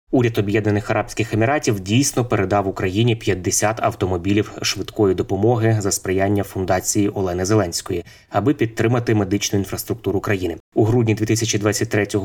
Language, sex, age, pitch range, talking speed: Ukrainian, male, 20-39, 100-115 Hz, 120 wpm